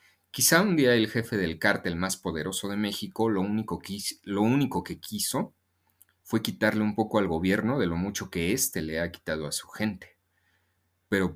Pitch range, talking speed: 85-105 Hz, 180 wpm